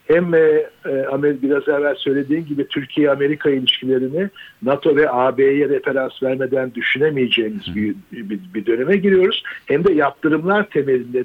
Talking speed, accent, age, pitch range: 105 wpm, native, 60-79, 120-165 Hz